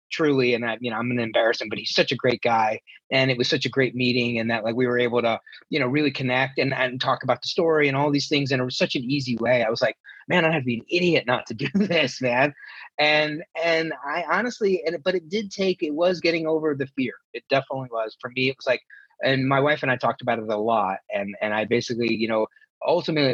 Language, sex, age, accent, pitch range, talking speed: English, male, 30-49, American, 120-150 Hz, 275 wpm